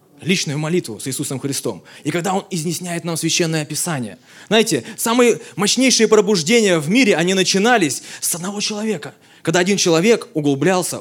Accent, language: native, Russian